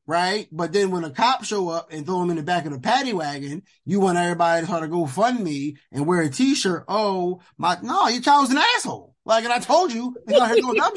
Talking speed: 255 wpm